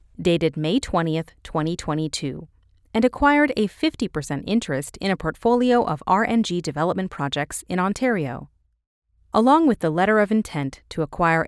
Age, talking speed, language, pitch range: 30-49, 135 wpm, English, 155-230 Hz